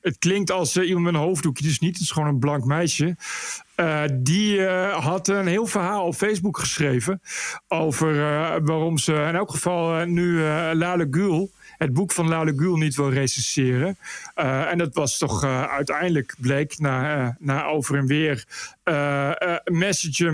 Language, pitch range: Dutch, 150-180 Hz